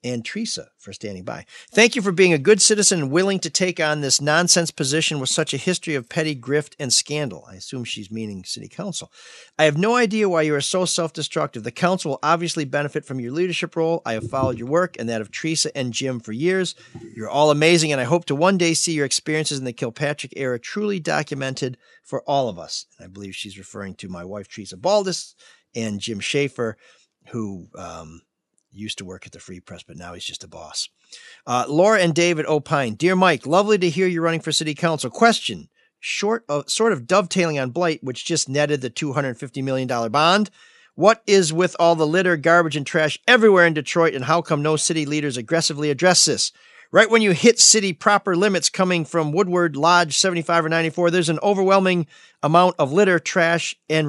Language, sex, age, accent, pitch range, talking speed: English, male, 40-59, American, 135-180 Hz, 210 wpm